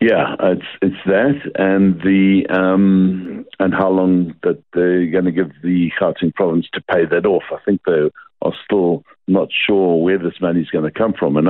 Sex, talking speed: male, 200 wpm